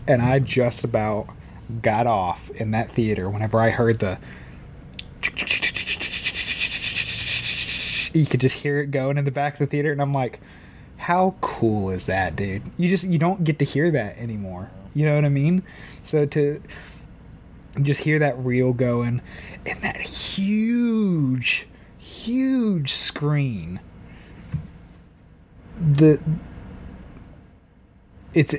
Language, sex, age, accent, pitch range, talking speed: English, male, 20-39, American, 100-145 Hz, 130 wpm